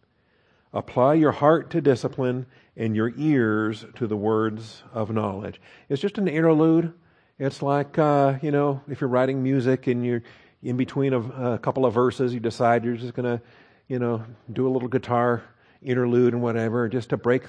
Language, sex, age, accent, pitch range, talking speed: English, male, 50-69, American, 115-140 Hz, 180 wpm